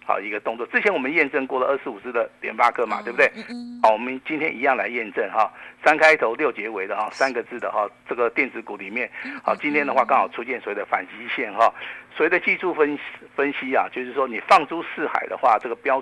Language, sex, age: Chinese, male, 50-69